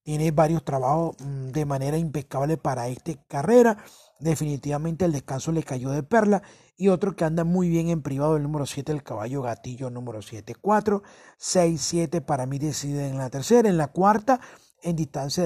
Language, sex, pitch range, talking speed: Spanish, male, 145-175 Hz, 180 wpm